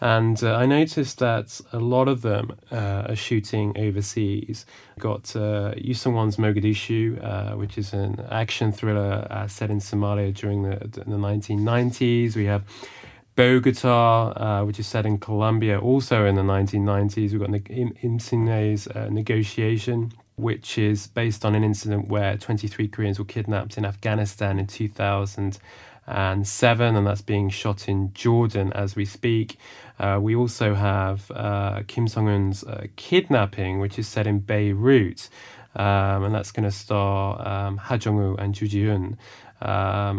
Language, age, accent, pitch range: Korean, 20-39, British, 100-115 Hz